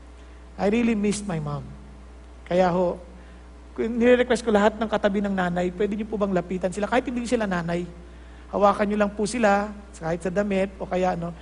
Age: 50-69